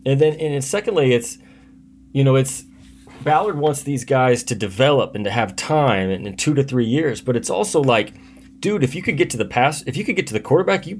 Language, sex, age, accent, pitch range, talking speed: English, male, 30-49, American, 105-135 Hz, 240 wpm